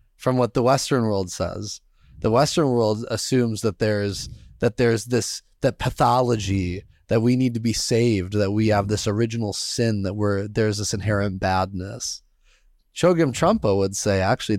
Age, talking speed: 30-49, 170 wpm